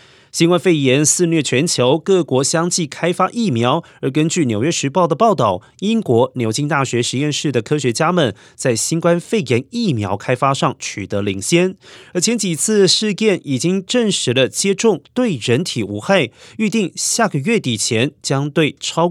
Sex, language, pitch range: male, Chinese, 125-175 Hz